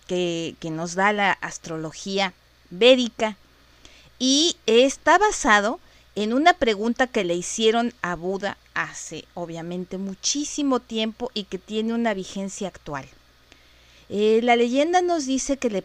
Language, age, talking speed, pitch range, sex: Spanish, 40-59, 135 wpm, 175-240 Hz, female